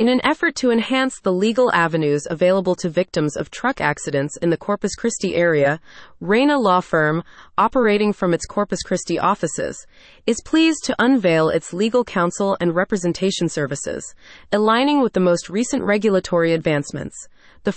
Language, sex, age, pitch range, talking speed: English, female, 30-49, 170-225 Hz, 155 wpm